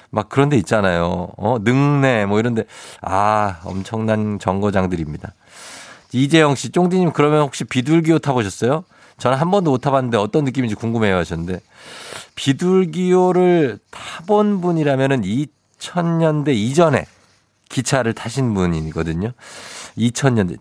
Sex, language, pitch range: male, Korean, 105-155 Hz